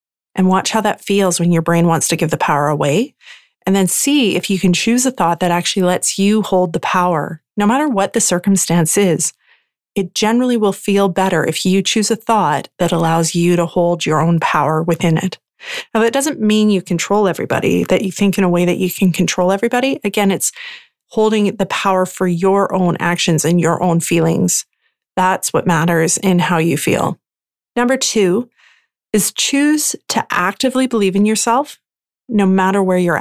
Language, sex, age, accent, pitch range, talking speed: English, female, 30-49, American, 175-220 Hz, 195 wpm